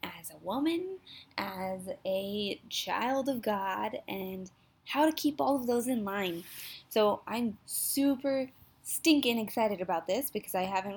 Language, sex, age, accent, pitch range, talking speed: English, female, 10-29, American, 195-245 Hz, 150 wpm